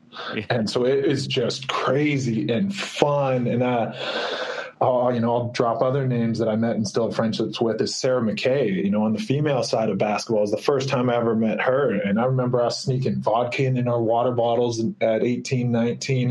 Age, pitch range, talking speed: 20-39, 110-130 Hz, 215 wpm